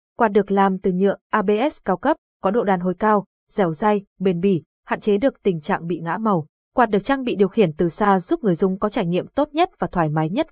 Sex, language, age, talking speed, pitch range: female, Vietnamese, 20-39, 255 wpm, 185-235 Hz